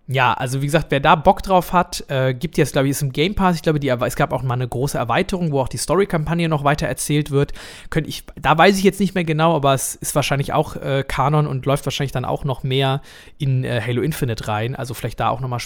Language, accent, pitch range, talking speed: German, German, 125-155 Hz, 265 wpm